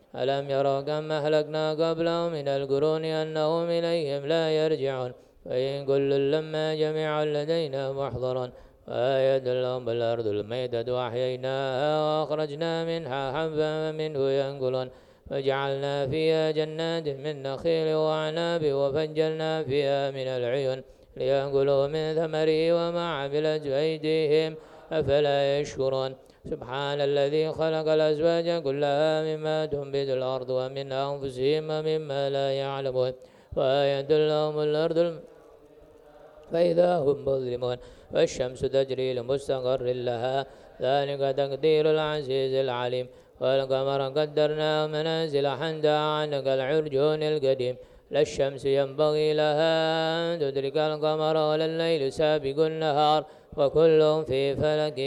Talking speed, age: 85 wpm, 20-39